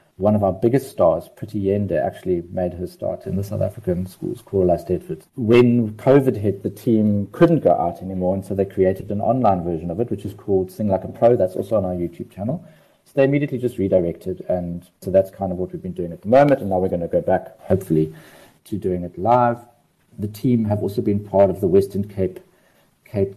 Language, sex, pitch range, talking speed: English, male, 95-120 Hz, 230 wpm